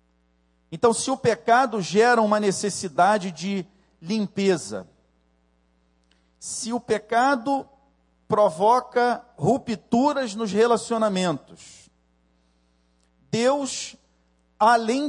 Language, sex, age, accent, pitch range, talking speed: Portuguese, male, 40-59, Brazilian, 125-205 Hz, 70 wpm